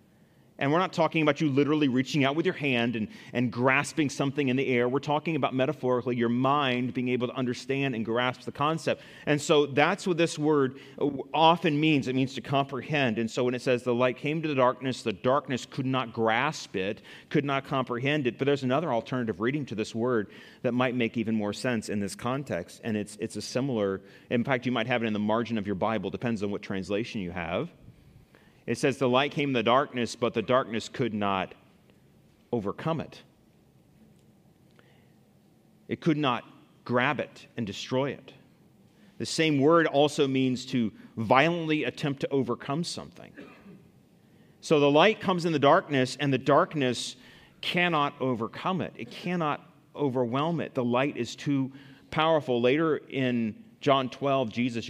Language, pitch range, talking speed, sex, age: English, 120-145 Hz, 180 wpm, male, 30-49